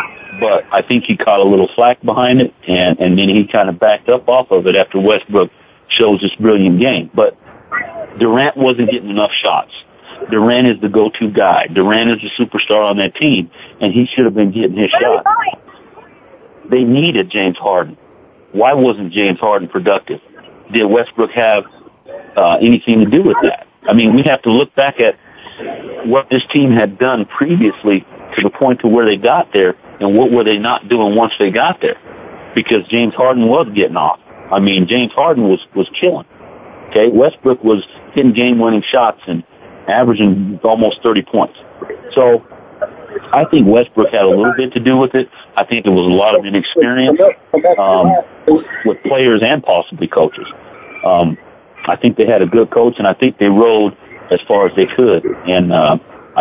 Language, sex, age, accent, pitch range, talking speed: English, male, 50-69, American, 105-135 Hz, 185 wpm